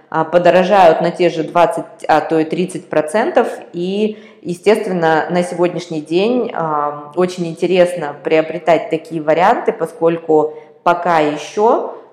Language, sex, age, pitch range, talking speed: Russian, female, 20-39, 155-180 Hz, 115 wpm